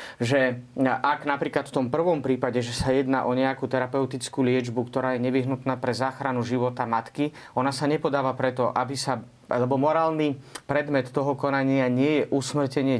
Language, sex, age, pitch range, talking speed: Slovak, male, 30-49, 130-150 Hz, 160 wpm